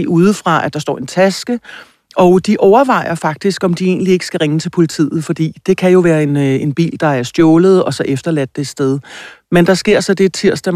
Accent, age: native, 60-79